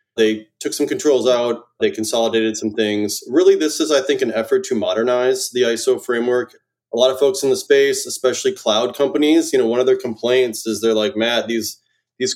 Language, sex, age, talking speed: English, male, 20-39, 210 wpm